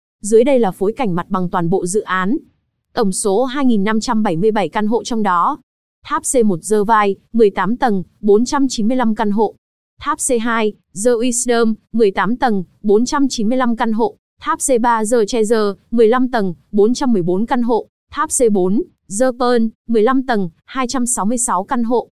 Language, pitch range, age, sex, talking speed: Vietnamese, 210-250 Hz, 20-39, female, 135 wpm